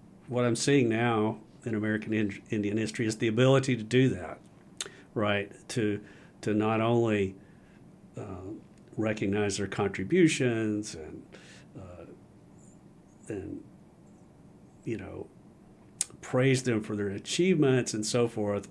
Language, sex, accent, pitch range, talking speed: English, male, American, 100-125 Hz, 115 wpm